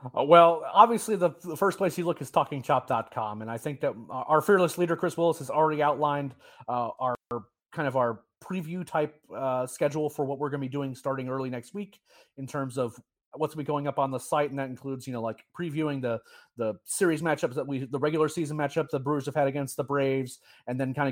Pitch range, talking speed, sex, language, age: 135-160 Hz, 225 wpm, male, English, 30-49